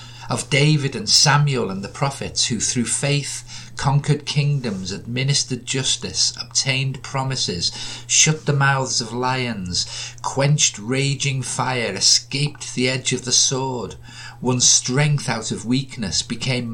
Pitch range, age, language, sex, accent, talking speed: 115-130 Hz, 50-69, English, male, British, 130 wpm